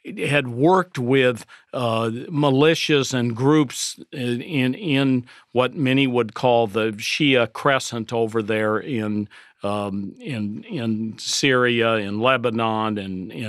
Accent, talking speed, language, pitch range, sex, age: American, 125 wpm, English, 115-140 Hz, male, 50-69